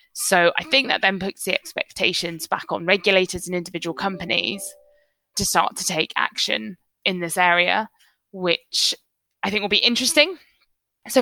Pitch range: 175-205 Hz